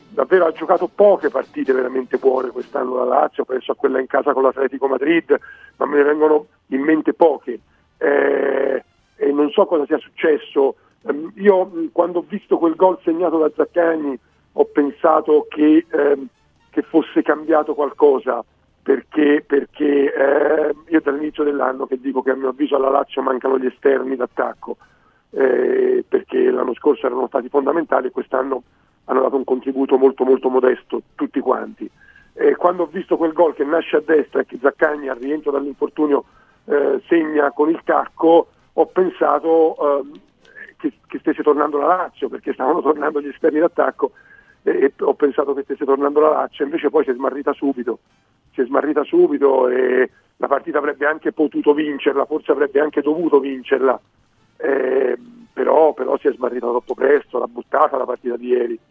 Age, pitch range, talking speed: 40-59, 140-220 Hz, 170 wpm